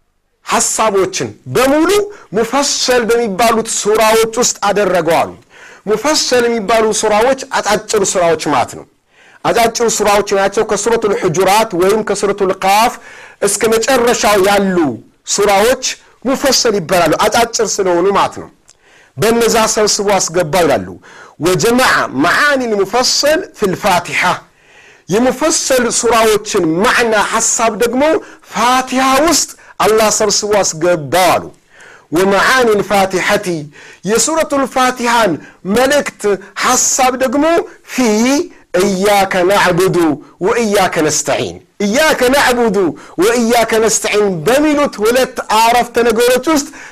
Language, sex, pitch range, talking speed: Amharic, male, 200-255 Hz, 85 wpm